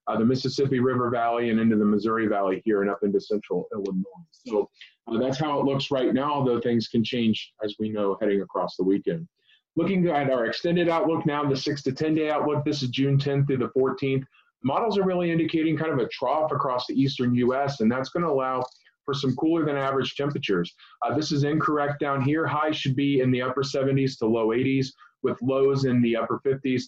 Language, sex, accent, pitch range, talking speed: English, male, American, 115-150 Hz, 215 wpm